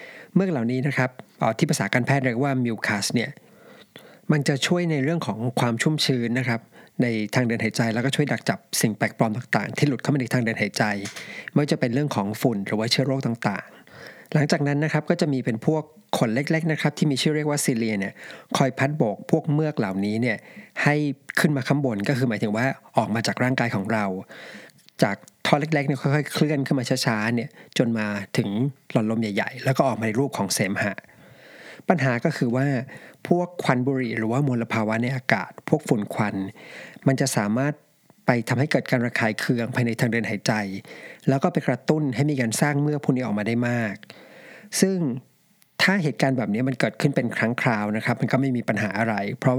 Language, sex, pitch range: Thai, male, 115-145 Hz